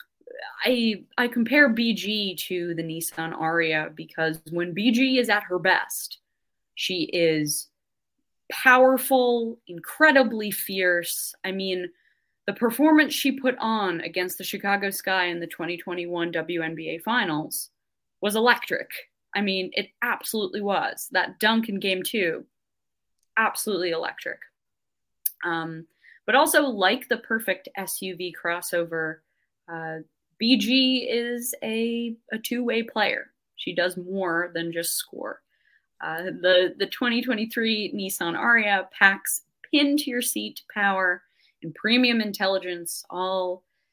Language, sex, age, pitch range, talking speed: English, female, 20-39, 175-235 Hz, 120 wpm